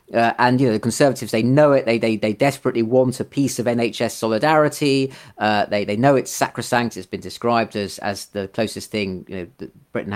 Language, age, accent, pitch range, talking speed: English, 30-49, British, 110-135 Hz, 220 wpm